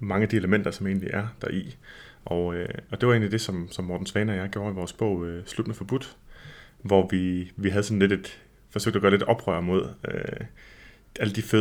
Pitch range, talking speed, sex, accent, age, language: 90-105 Hz, 220 wpm, male, native, 30-49, Danish